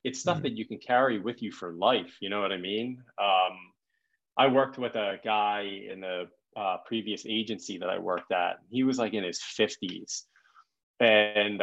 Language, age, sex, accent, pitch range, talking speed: English, 30-49, male, American, 100-115 Hz, 190 wpm